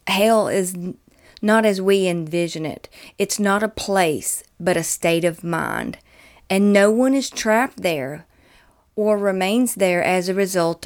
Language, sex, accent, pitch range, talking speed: English, female, American, 175-215 Hz, 155 wpm